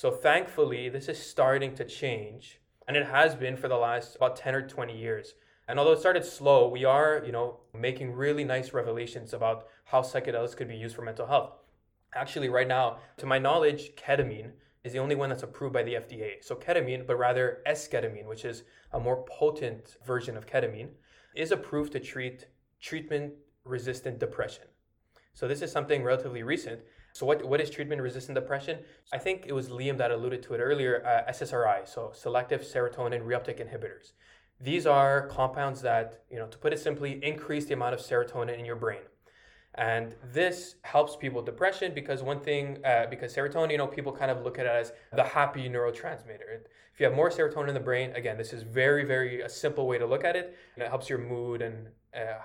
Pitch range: 120-150 Hz